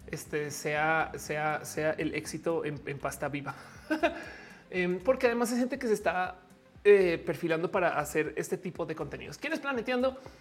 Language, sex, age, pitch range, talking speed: Spanish, male, 30-49, 155-220 Hz, 165 wpm